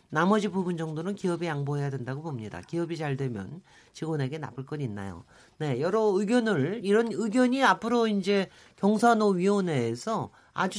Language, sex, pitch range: Korean, male, 150-215 Hz